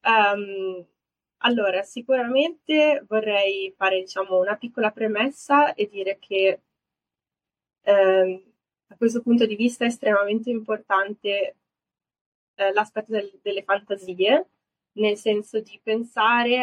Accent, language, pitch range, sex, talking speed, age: native, Italian, 185-215 Hz, female, 110 wpm, 20-39